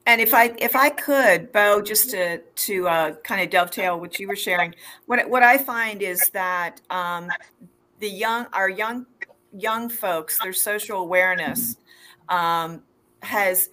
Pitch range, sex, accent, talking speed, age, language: 165-195 Hz, female, American, 155 wpm, 40-59, English